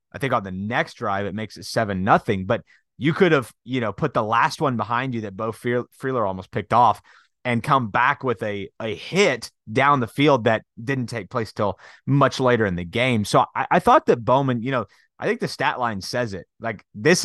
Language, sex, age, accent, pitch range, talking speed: English, male, 30-49, American, 115-155 Hz, 235 wpm